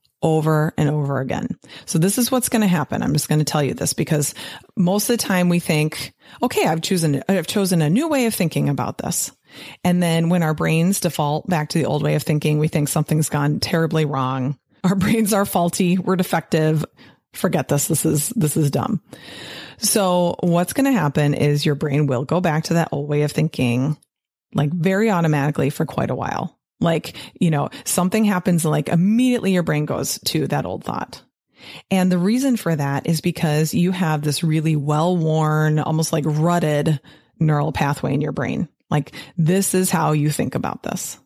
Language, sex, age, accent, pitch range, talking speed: English, female, 30-49, American, 150-185 Hz, 195 wpm